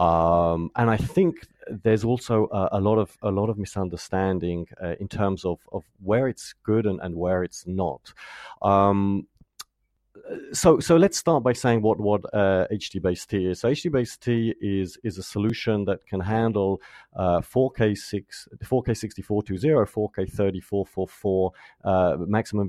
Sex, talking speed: male, 155 wpm